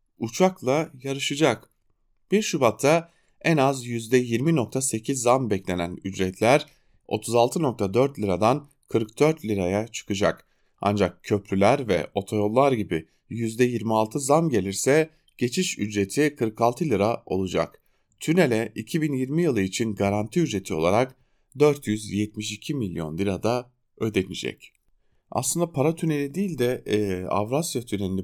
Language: German